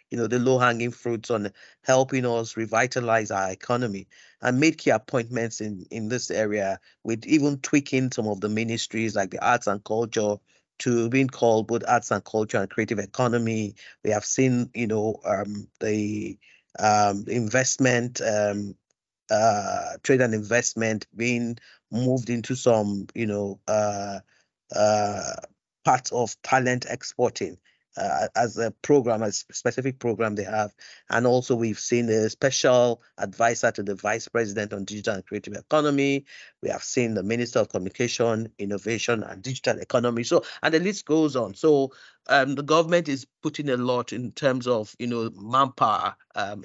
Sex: male